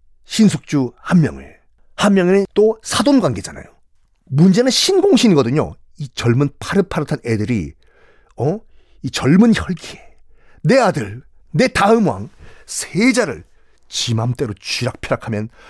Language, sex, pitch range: Korean, male, 110-180 Hz